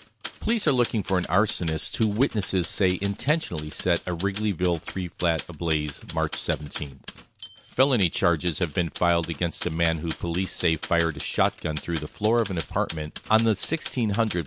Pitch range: 80-110 Hz